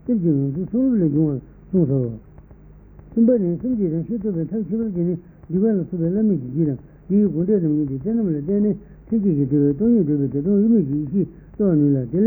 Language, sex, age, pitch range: Italian, male, 60-79, 150-205 Hz